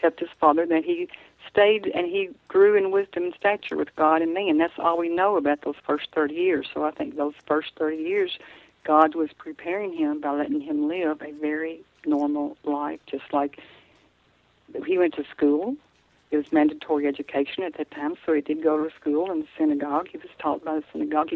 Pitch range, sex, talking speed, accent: 150-200 Hz, female, 210 wpm, American